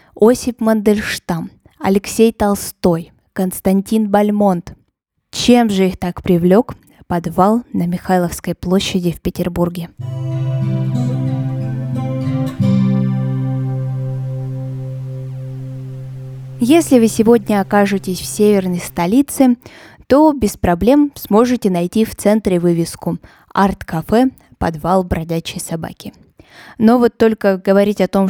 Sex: female